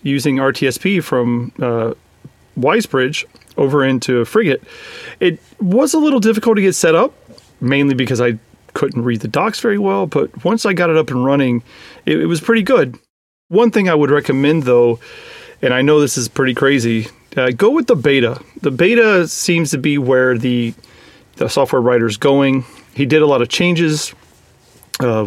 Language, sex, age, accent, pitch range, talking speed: English, male, 40-59, American, 120-155 Hz, 180 wpm